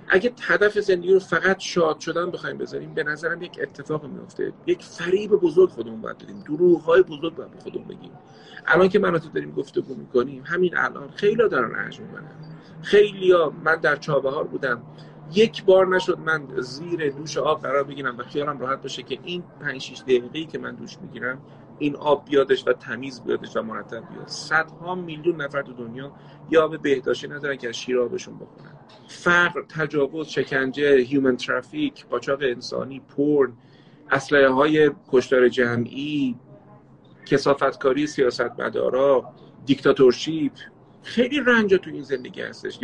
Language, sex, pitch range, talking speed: Persian, male, 140-195 Hz, 155 wpm